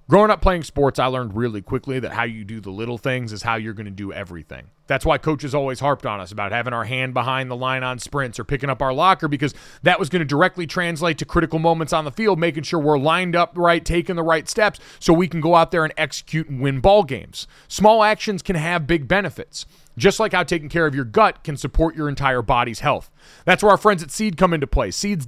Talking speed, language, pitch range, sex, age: 255 wpm, English, 135-180 Hz, male, 30-49